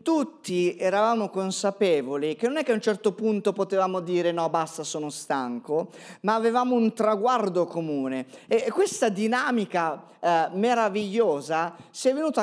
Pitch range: 175-235 Hz